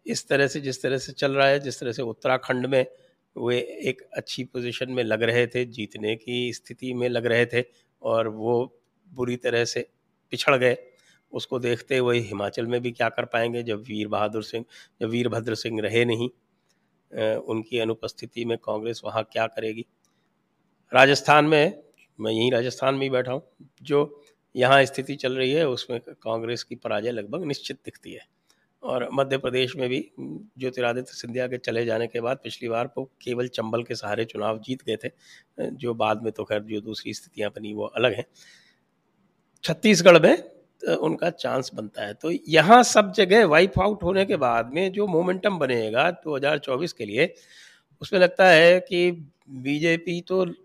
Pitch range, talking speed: 115-150 Hz, 165 wpm